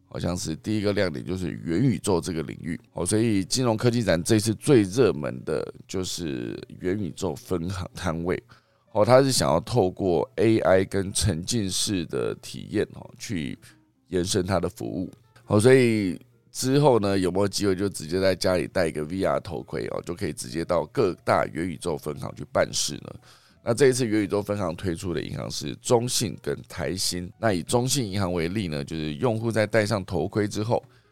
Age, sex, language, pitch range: 20-39, male, Chinese, 90-115 Hz